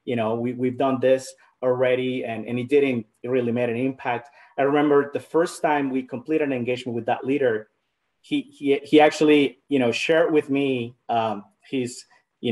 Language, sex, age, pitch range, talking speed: English, male, 30-49, 125-155 Hz, 185 wpm